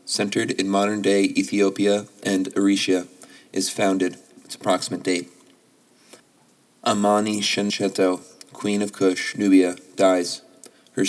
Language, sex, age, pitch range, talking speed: English, male, 30-49, 90-100 Hz, 105 wpm